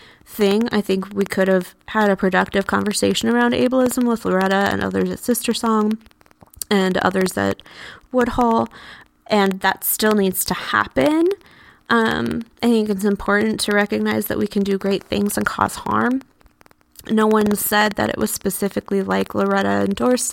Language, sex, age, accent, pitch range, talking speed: English, female, 20-39, American, 200-245 Hz, 160 wpm